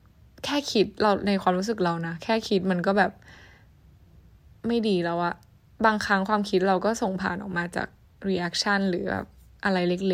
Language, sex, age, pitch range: Thai, female, 10-29, 180-220 Hz